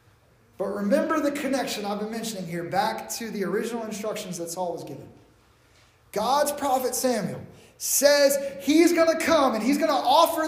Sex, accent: male, American